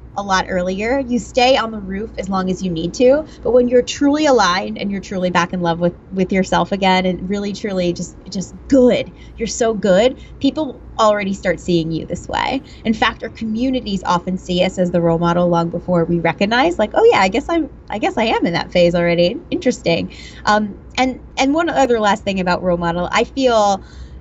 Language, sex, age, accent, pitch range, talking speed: English, female, 20-39, American, 180-235 Hz, 215 wpm